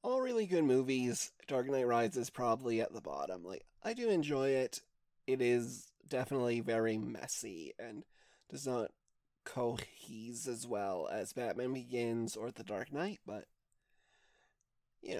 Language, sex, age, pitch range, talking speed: English, male, 20-39, 115-170 Hz, 140 wpm